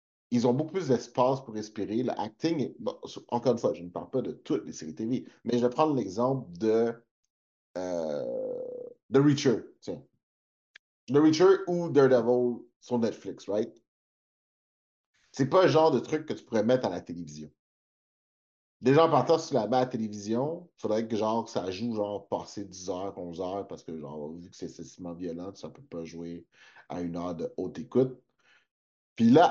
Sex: male